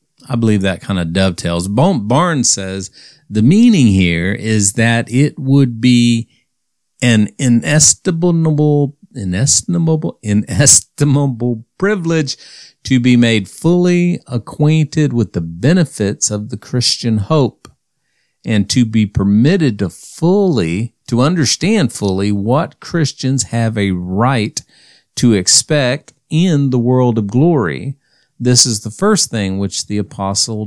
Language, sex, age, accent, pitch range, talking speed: English, male, 50-69, American, 110-150 Hz, 120 wpm